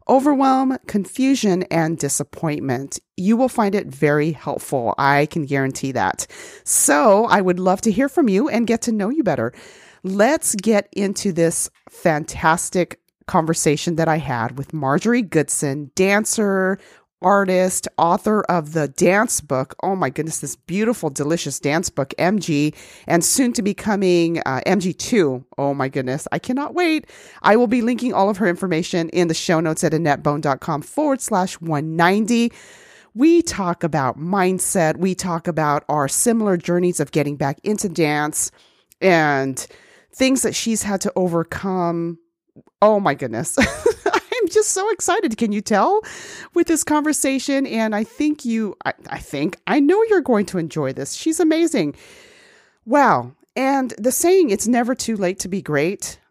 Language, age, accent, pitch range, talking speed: English, 40-59, American, 160-235 Hz, 160 wpm